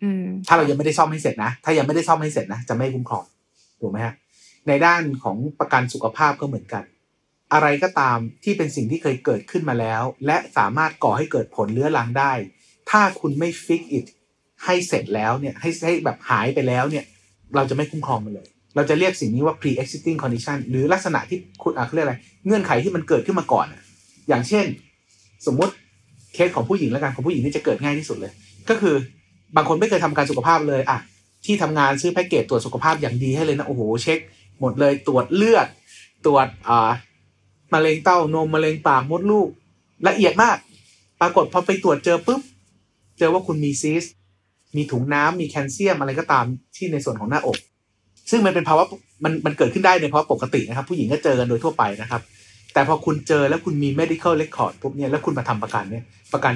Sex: male